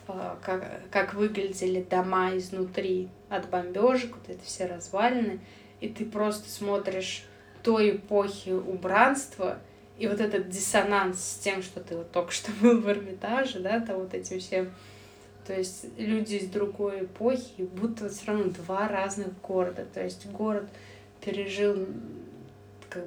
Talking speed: 145 wpm